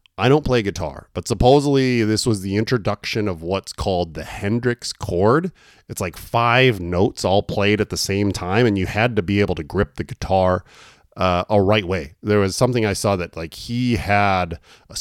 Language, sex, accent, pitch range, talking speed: English, male, American, 95-120 Hz, 200 wpm